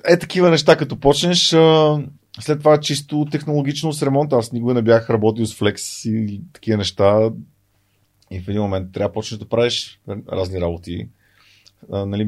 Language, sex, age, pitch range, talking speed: Bulgarian, male, 30-49, 100-120 Hz, 155 wpm